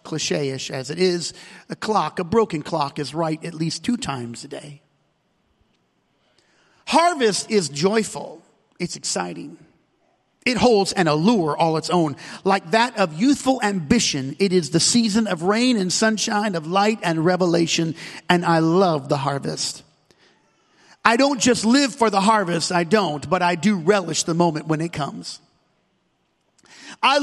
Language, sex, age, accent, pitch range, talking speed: English, male, 40-59, American, 170-235 Hz, 155 wpm